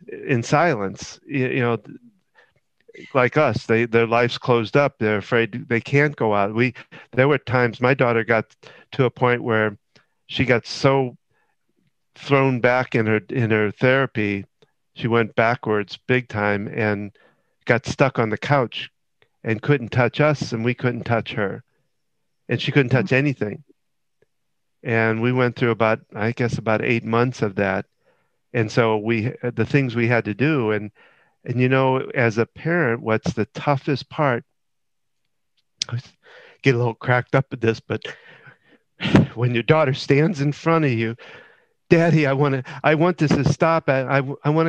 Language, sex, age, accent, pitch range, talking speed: English, male, 50-69, American, 115-140 Hz, 170 wpm